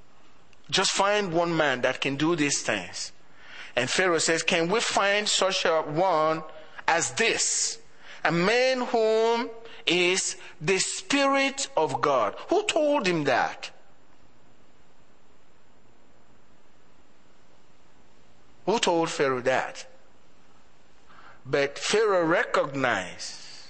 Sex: male